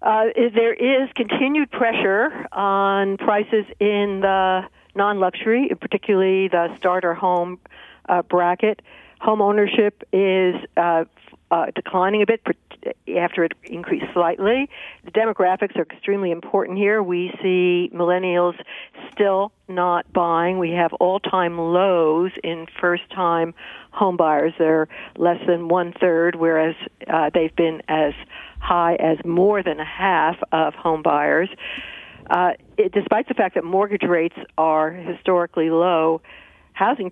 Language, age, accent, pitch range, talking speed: English, 60-79, American, 170-205 Hz, 125 wpm